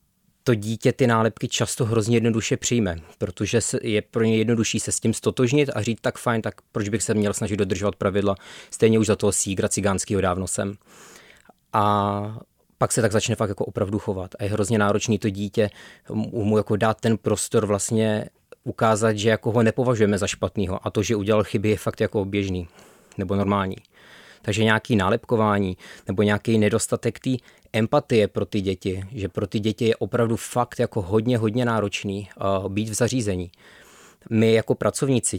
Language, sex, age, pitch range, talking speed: Czech, male, 20-39, 100-115 Hz, 175 wpm